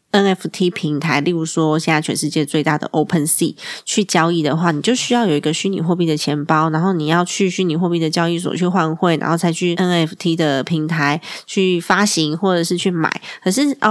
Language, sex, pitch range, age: Chinese, female, 160-200 Hz, 20-39